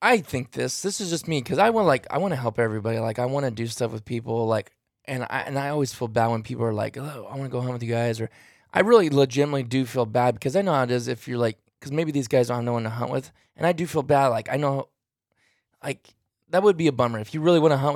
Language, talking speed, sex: English, 305 wpm, male